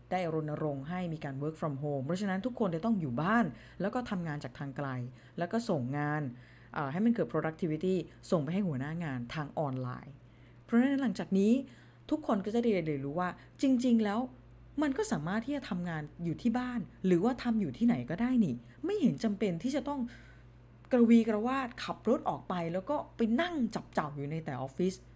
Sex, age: female, 20-39